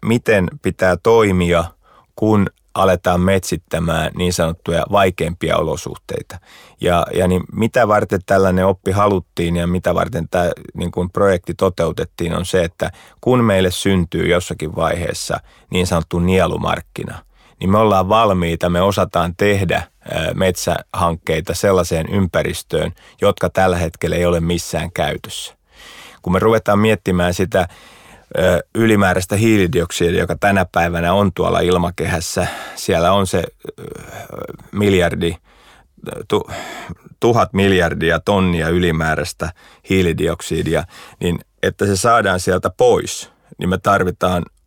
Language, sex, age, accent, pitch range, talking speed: Finnish, male, 30-49, native, 85-100 Hz, 110 wpm